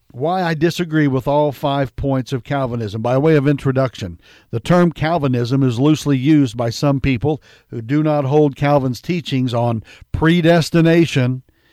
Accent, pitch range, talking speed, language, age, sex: American, 125-150 Hz, 155 wpm, English, 60-79, male